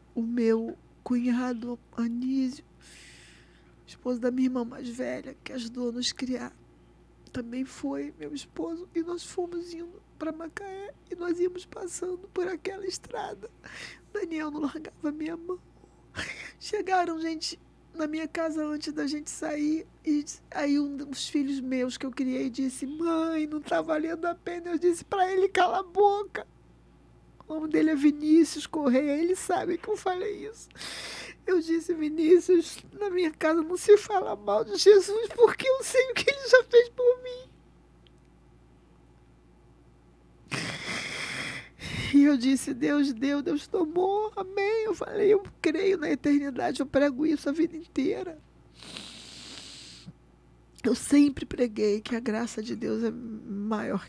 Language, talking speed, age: Portuguese, 150 wpm, 20-39